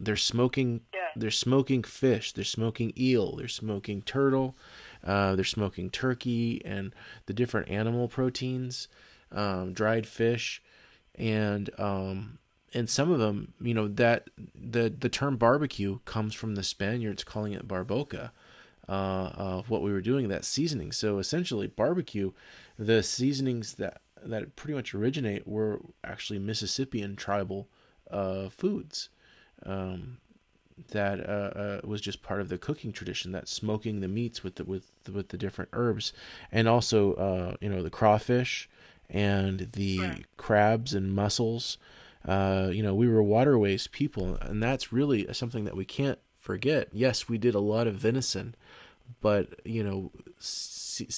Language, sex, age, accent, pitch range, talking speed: English, male, 20-39, American, 100-125 Hz, 150 wpm